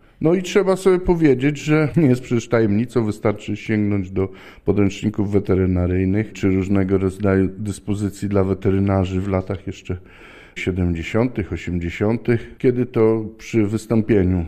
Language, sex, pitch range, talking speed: Polish, male, 100-125 Hz, 125 wpm